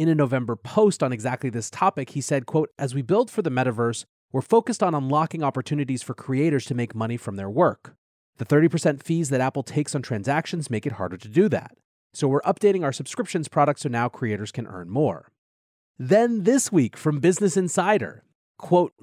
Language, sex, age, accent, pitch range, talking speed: English, male, 30-49, American, 125-175 Hz, 200 wpm